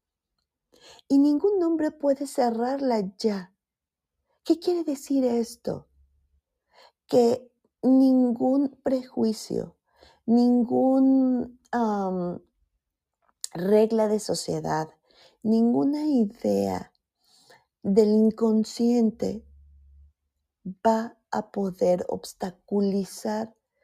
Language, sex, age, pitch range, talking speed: Spanish, female, 40-59, 170-240 Hz, 65 wpm